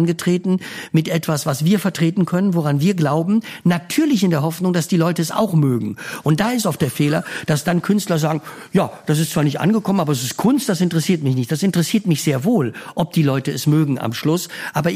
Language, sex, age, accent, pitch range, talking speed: German, male, 50-69, German, 145-180 Hz, 230 wpm